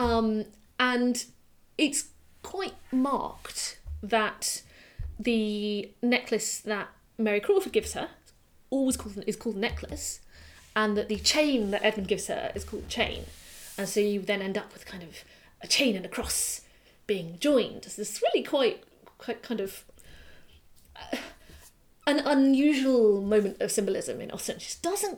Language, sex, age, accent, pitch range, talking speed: English, female, 30-49, British, 195-250 Hz, 150 wpm